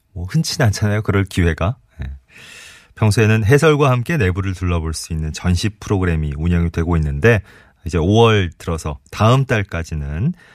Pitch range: 85-125 Hz